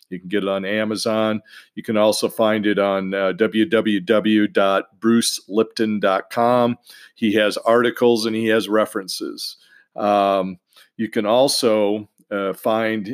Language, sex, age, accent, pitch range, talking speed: English, male, 50-69, American, 100-120 Hz, 125 wpm